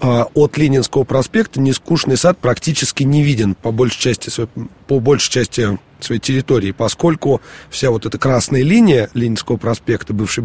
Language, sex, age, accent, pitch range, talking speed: Russian, male, 30-49, native, 115-145 Hz, 145 wpm